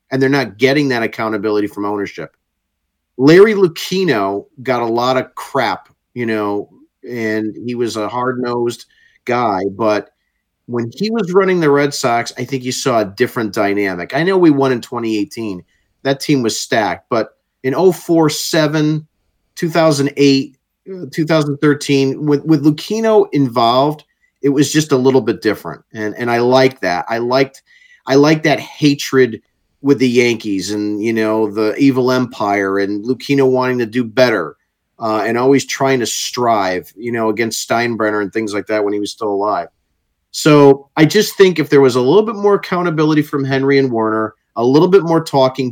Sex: male